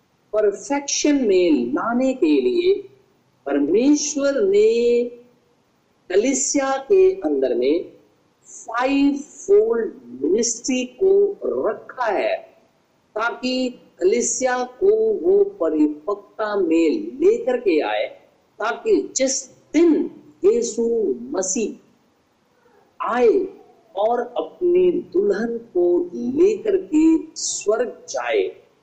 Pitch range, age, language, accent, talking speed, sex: 235-390 Hz, 50-69, Hindi, native, 75 wpm, male